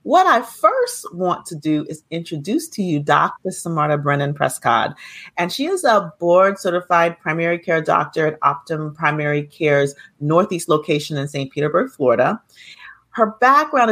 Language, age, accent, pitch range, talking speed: English, 30-49, American, 155-195 Hz, 150 wpm